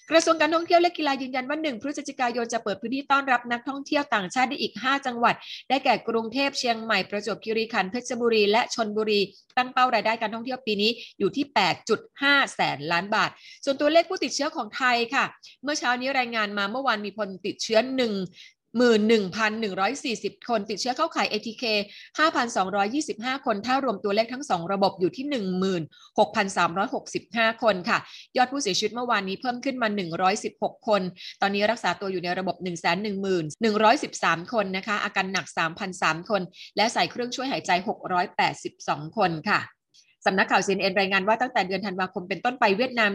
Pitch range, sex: 195-255 Hz, female